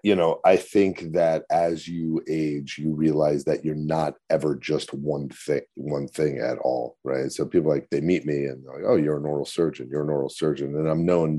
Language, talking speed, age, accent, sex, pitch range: English, 225 wpm, 40-59, American, male, 75-85 Hz